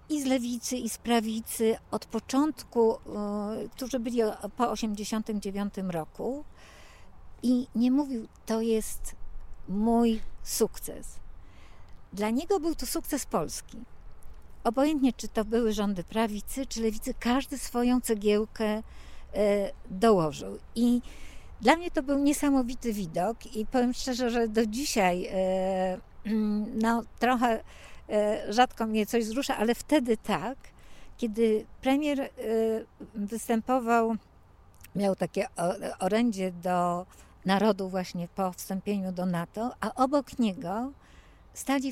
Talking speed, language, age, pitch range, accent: 110 wpm, Polish, 50-69, 205-250 Hz, native